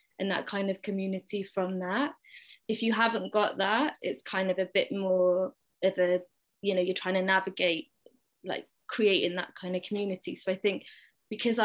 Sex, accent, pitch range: female, British, 185-205 Hz